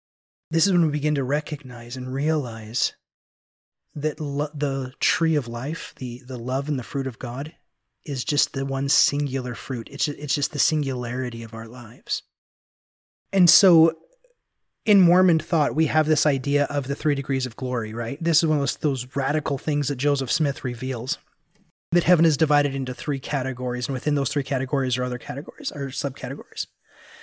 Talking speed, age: 185 wpm, 30-49